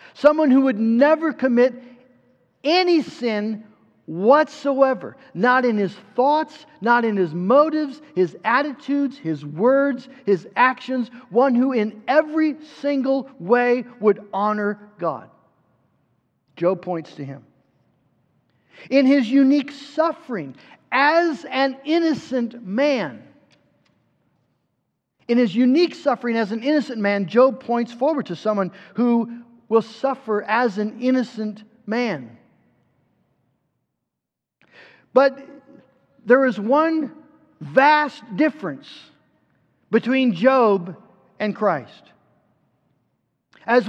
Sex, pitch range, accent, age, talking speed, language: male, 220-280 Hz, American, 50-69, 100 wpm, English